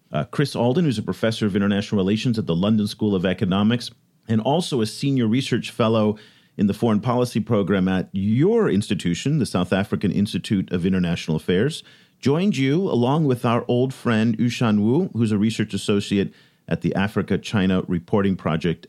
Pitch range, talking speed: 105-140 Hz, 170 wpm